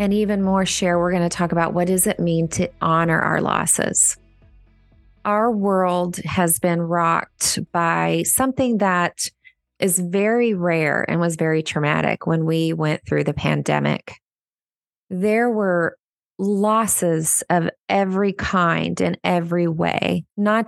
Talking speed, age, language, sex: 140 wpm, 30-49, English, female